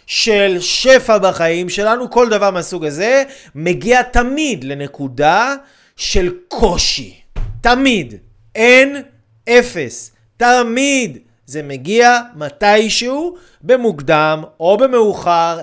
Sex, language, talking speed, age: male, Hebrew, 90 wpm, 30-49